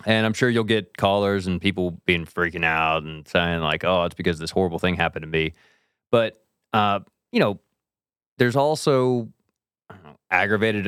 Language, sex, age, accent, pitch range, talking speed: English, male, 30-49, American, 85-105 Hz, 165 wpm